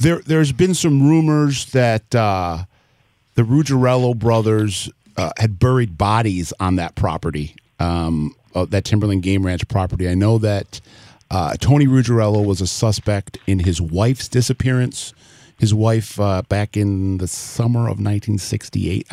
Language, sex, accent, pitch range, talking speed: English, male, American, 100-120 Hz, 140 wpm